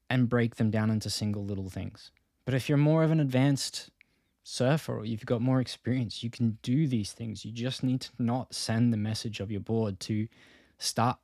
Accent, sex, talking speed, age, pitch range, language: Australian, male, 210 wpm, 20-39, 105-125 Hz, English